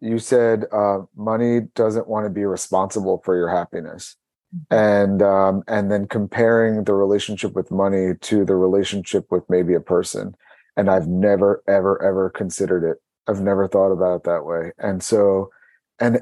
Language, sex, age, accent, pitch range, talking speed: English, male, 30-49, American, 100-120 Hz, 165 wpm